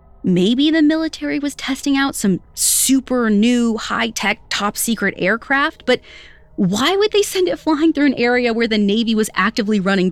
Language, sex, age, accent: English, female, 30-49, American